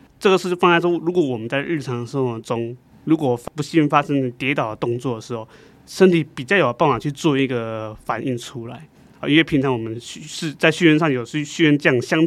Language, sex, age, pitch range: Chinese, male, 20-39, 125-165 Hz